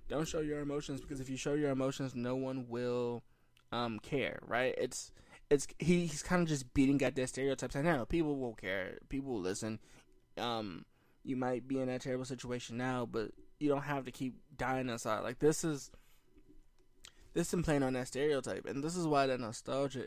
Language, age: English, 20-39